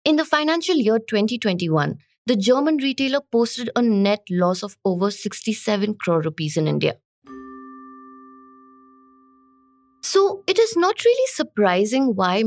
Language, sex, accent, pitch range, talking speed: English, female, Indian, 180-275 Hz, 125 wpm